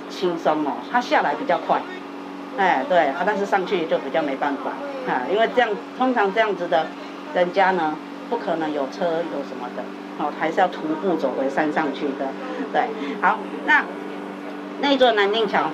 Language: Chinese